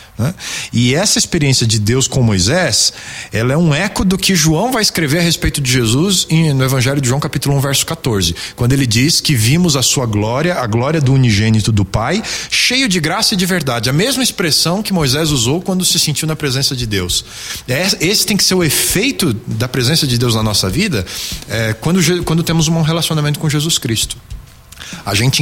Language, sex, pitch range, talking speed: Portuguese, male, 110-165 Hz, 195 wpm